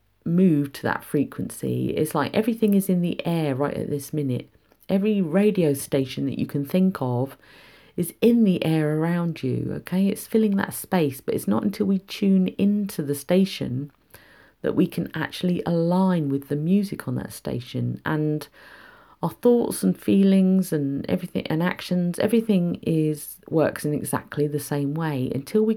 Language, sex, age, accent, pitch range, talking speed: English, female, 40-59, British, 140-180 Hz, 170 wpm